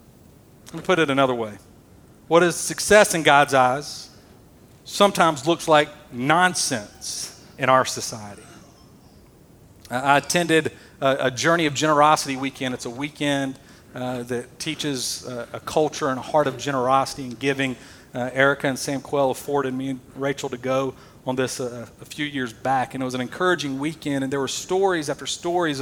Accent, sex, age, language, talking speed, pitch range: American, male, 40-59, English, 170 wpm, 130-160 Hz